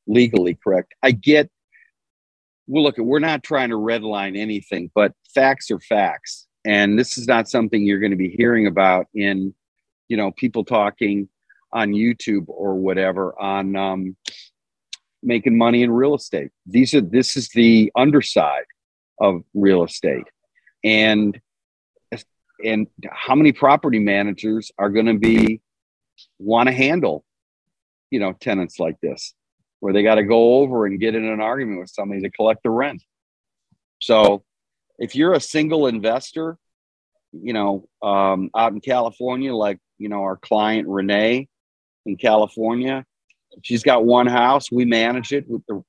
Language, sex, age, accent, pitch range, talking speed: English, male, 50-69, American, 100-130 Hz, 150 wpm